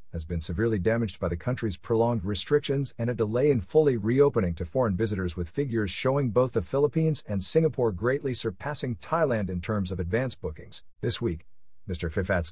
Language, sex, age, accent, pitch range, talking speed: English, male, 50-69, American, 95-125 Hz, 180 wpm